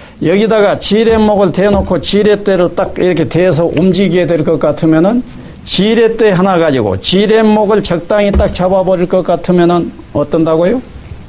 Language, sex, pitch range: Korean, male, 135-200 Hz